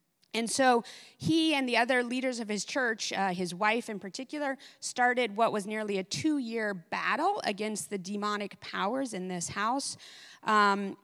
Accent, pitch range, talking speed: American, 180-235 Hz, 165 wpm